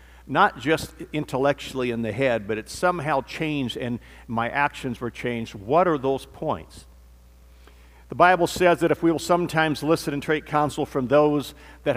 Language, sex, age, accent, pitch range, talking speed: English, male, 50-69, American, 110-145 Hz, 170 wpm